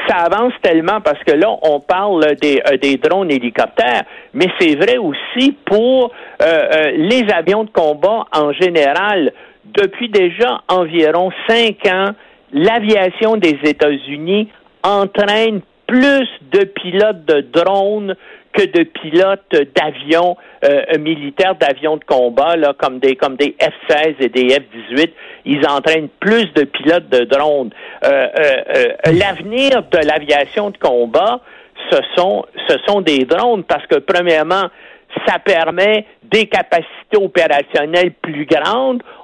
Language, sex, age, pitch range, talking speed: French, male, 60-79, 155-215 Hz, 135 wpm